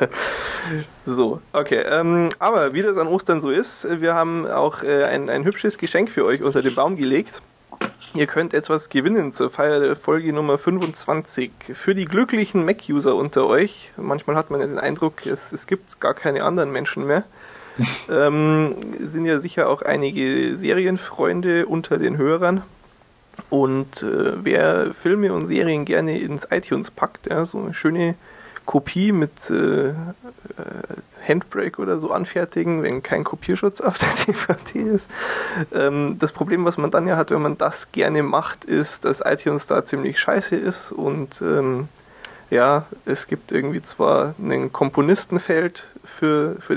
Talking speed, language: 160 wpm, German